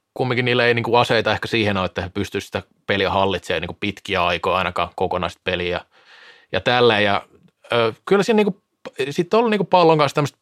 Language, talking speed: Finnish, 215 wpm